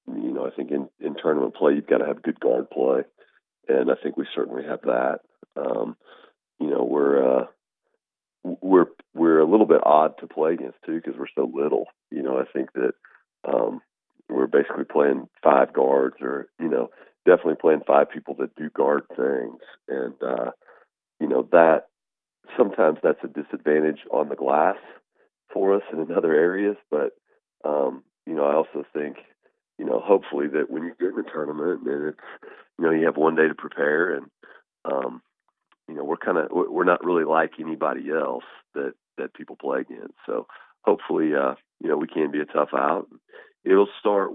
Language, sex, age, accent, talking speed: English, male, 40-59, American, 185 wpm